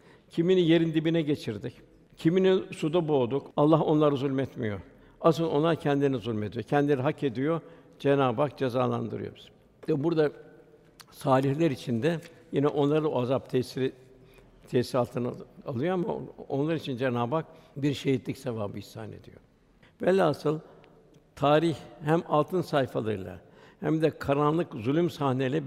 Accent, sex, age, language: native, male, 60-79, Turkish